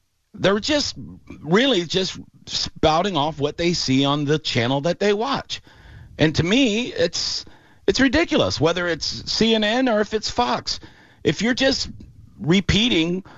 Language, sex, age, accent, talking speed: English, male, 40-59, American, 145 wpm